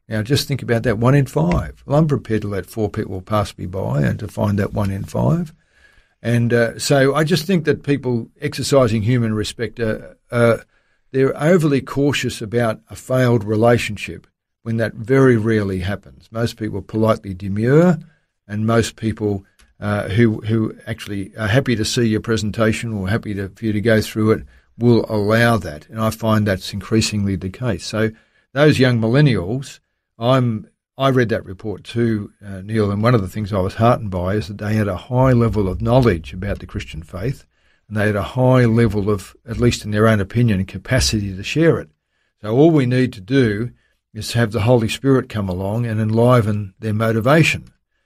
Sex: male